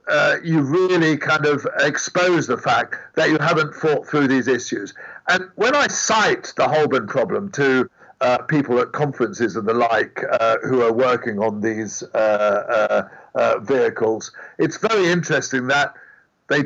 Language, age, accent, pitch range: English, 50-69, British, 135-175 Hz